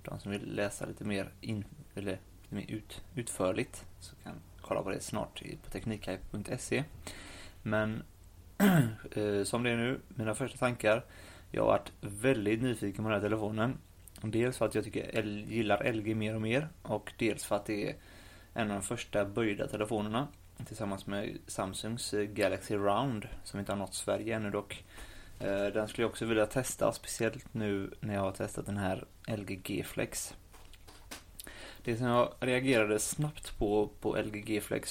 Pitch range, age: 100-115 Hz, 20-39